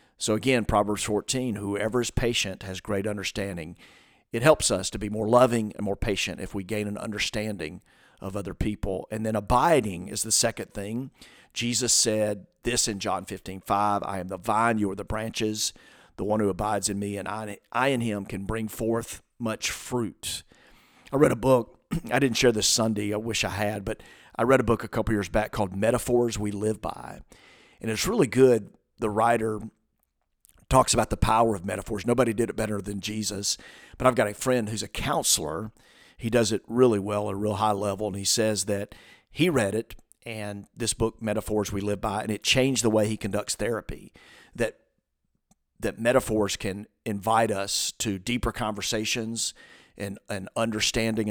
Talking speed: 190 wpm